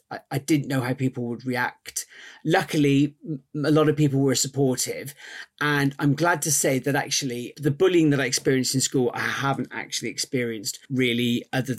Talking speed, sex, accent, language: 175 wpm, male, British, English